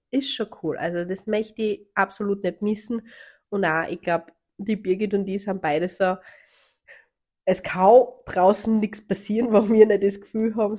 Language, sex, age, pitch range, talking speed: German, female, 20-39, 175-210 Hz, 180 wpm